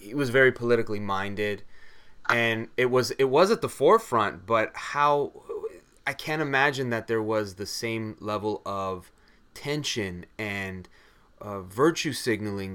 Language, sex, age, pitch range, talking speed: English, male, 30-49, 105-135 Hz, 140 wpm